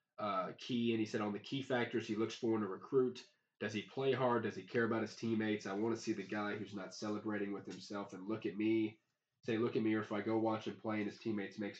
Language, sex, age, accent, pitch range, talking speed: English, male, 20-39, American, 100-115 Hz, 280 wpm